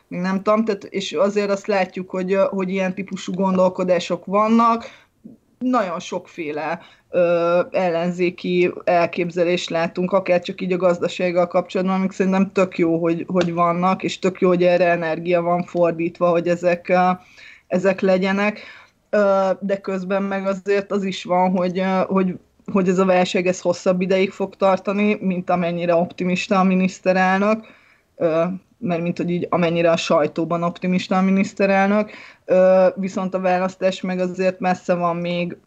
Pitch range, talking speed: 175-195 Hz, 150 wpm